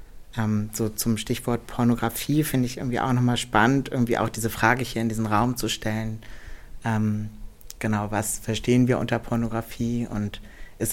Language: German